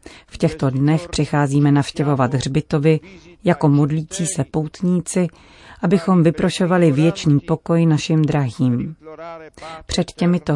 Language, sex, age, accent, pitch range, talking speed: Czech, female, 40-59, native, 140-165 Hz, 100 wpm